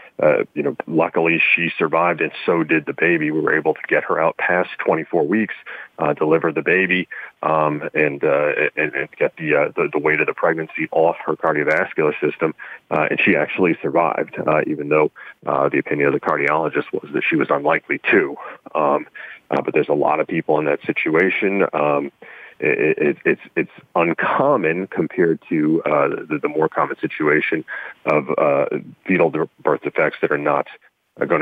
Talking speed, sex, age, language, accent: 185 wpm, male, 40-59, English, American